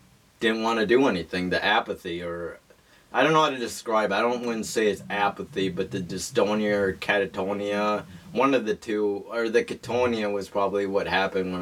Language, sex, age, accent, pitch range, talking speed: English, male, 30-49, American, 95-115 Hz, 190 wpm